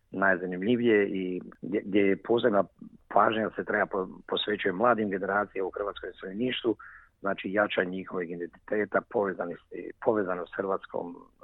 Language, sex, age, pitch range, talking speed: Croatian, male, 50-69, 95-120 Hz, 120 wpm